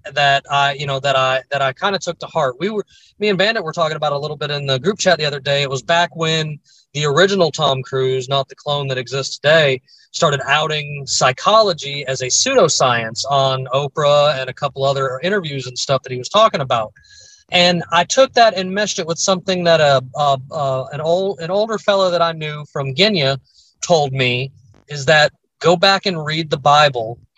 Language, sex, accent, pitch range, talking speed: English, male, American, 135-170 Hz, 215 wpm